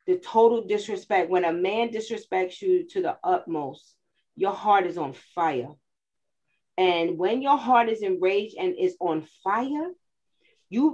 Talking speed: 150 wpm